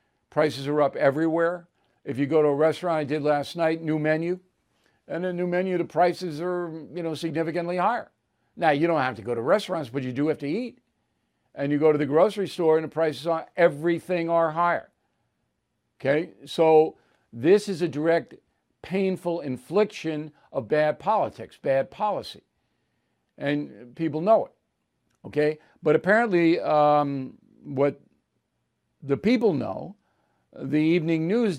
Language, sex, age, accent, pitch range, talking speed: English, male, 60-79, American, 140-175 Hz, 160 wpm